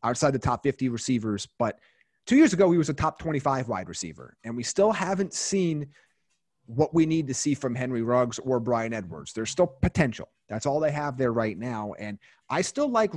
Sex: male